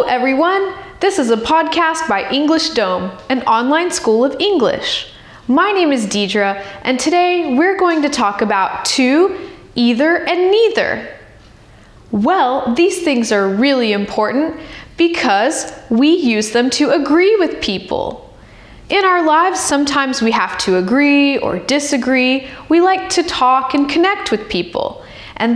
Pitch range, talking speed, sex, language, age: 235-340 Hz, 145 wpm, female, Russian, 10-29